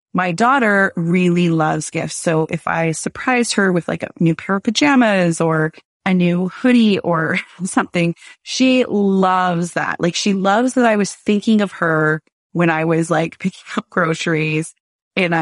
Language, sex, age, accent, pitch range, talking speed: English, female, 30-49, American, 165-215 Hz, 165 wpm